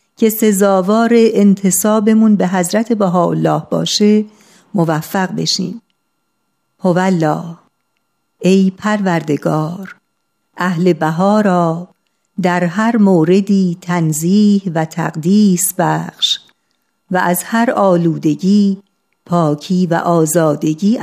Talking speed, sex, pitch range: 85 wpm, female, 170-210 Hz